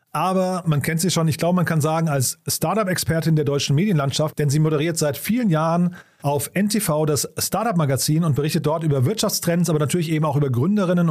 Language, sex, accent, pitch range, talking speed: German, male, German, 145-175 Hz, 195 wpm